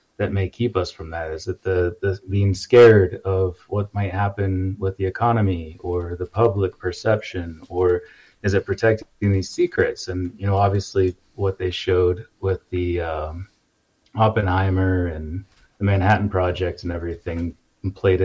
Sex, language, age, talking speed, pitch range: male, English, 30-49, 155 wpm, 90-115 Hz